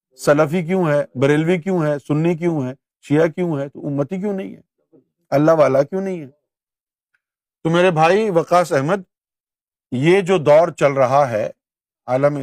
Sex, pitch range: male, 140-180 Hz